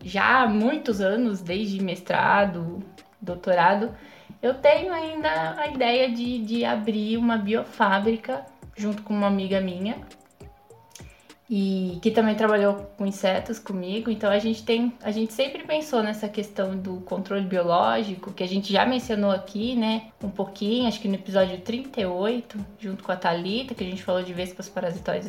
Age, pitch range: 10-29, 190-230 Hz